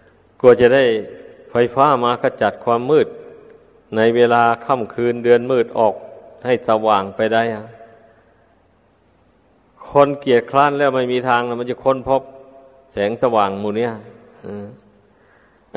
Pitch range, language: 105-140 Hz, Thai